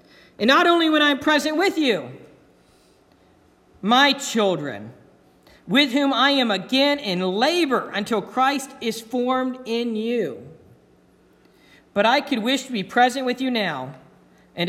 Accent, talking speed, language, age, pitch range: American, 145 wpm, English, 50-69, 185-265 Hz